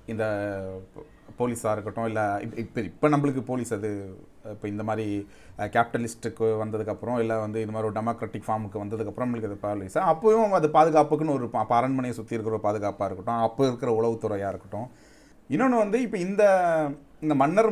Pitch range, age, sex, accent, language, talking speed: 110-150 Hz, 30-49, male, native, Tamil, 160 wpm